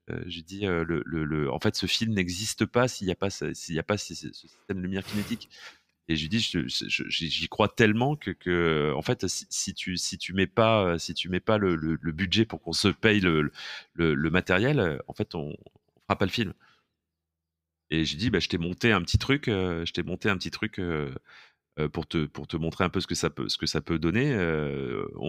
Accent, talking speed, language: French, 255 wpm, French